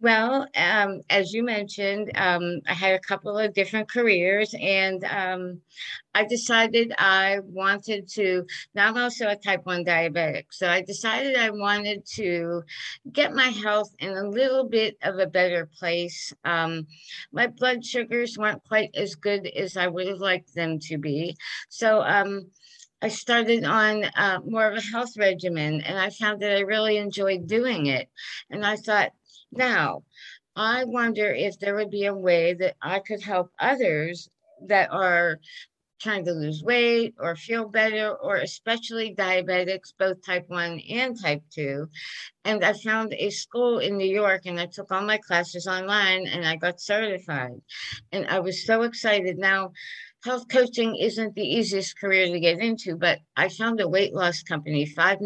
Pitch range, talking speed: 180-220 Hz, 170 wpm